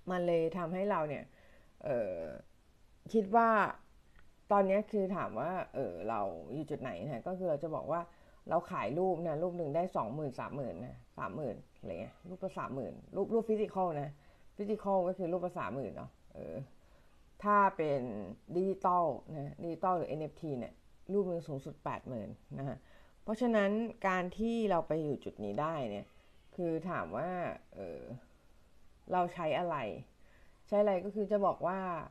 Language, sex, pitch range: Thai, female, 140-190 Hz